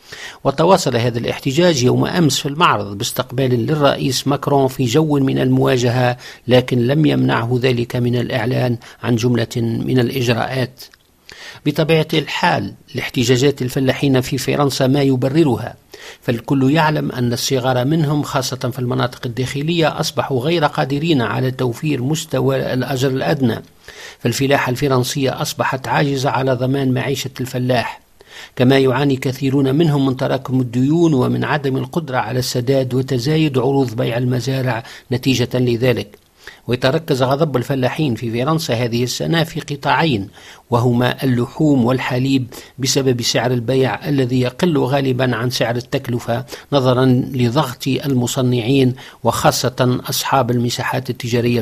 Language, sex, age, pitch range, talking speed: Arabic, male, 50-69, 125-140 Hz, 120 wpm